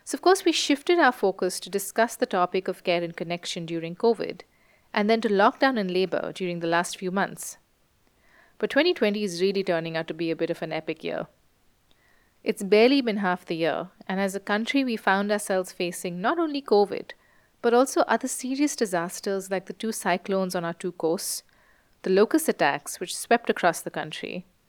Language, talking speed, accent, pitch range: English, 195 wpm, Indian, 180-245 Hz